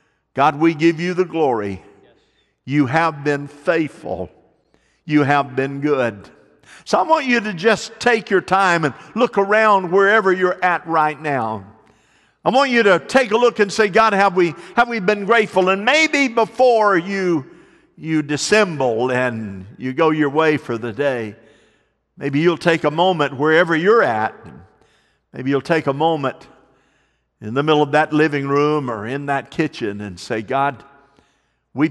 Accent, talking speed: American, 165 wpm